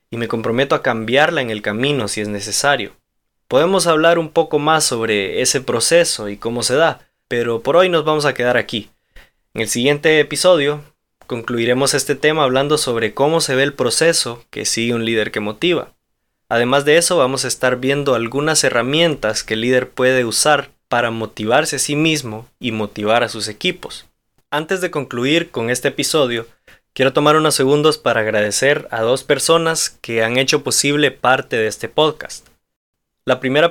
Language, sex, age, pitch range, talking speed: Spanish, male, 20-39, 115-150 Hz, 180 wpm